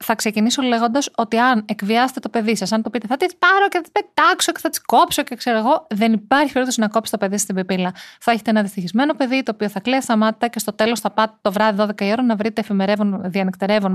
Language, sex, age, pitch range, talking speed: Greek, female, 30-49, 210-265 Hz, 260 wpm